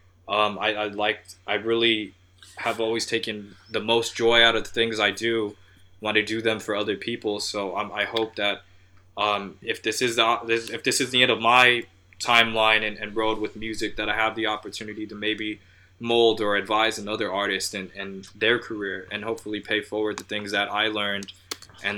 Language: English